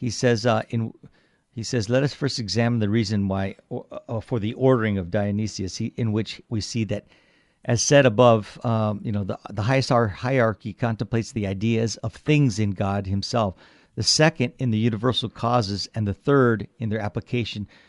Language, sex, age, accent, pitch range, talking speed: English, male, 50-69, American, 100-120 Hz, 190 wpm